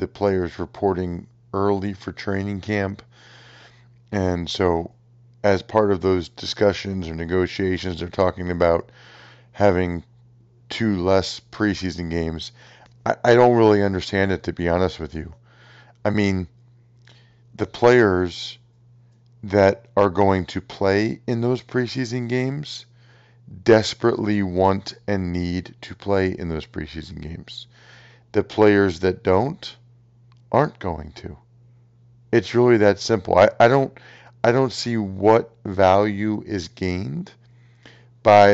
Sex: male